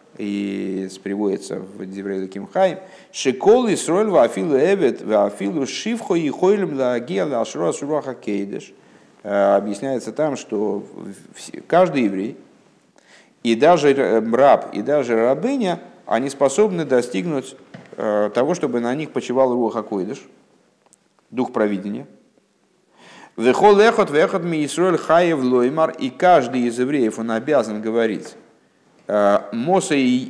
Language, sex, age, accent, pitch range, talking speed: Russian, male, 50-69, native, 110-160 Hz, 120 wpm